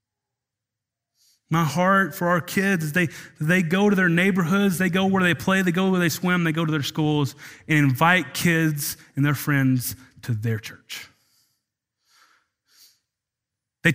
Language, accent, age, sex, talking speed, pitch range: English, American, 30-49, male, 155 wpm, 125-165 Hz